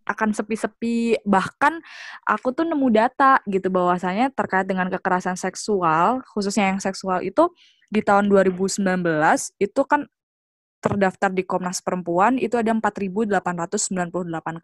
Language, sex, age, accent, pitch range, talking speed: Indonesian, female, 20-39, native, 170-230 Hz, 120 wpm